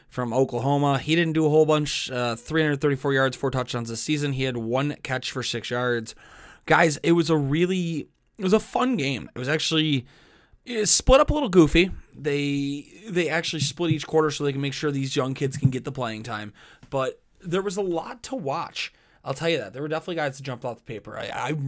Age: 20-39